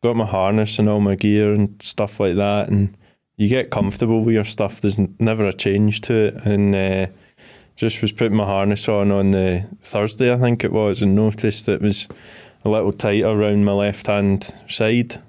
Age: 20-39